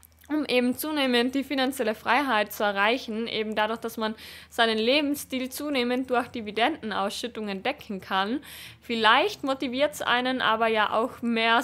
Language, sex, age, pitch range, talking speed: German, female, 20-39, 220-260 Hz, 140 wpm